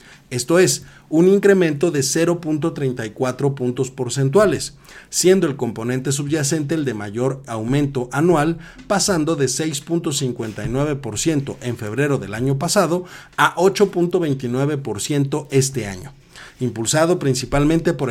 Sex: male